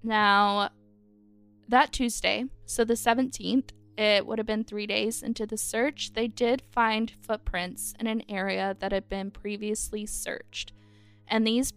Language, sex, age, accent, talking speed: English, female, 10-29, American, 150 wpm